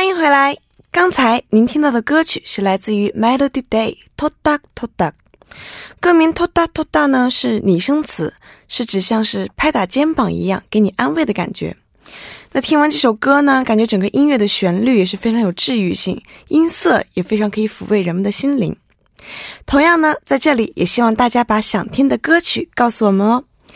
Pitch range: 205-280 Hz